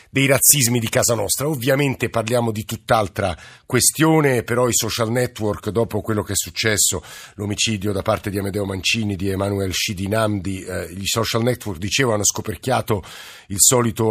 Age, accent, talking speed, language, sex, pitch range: 50-69, native, 155 wpm, Italian, male, 100-120 Hz